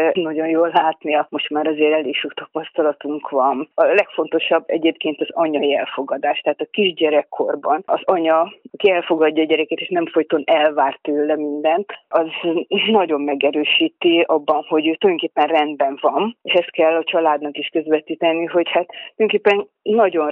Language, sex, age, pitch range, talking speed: Hungarian, female, 30-49, 150-175 Hz, 150 wpm